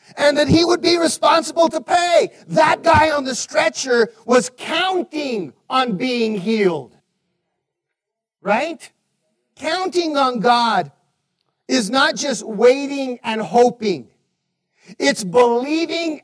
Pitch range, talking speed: 210-310 Hz, 110 wpm